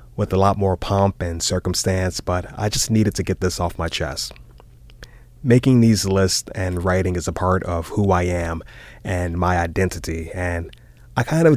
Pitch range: 90-115 Hz